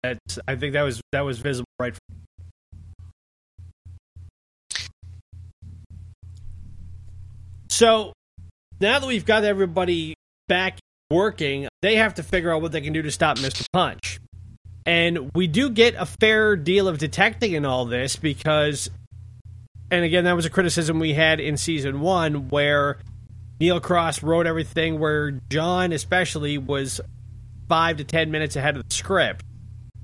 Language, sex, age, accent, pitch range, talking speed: English, male, 20-39, American, 110-175 Hz, 140 wpm